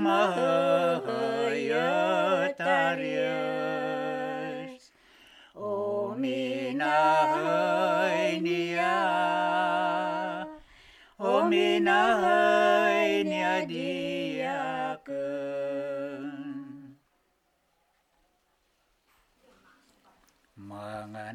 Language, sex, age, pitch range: Filipino, male, 60-79, 135-205 Hz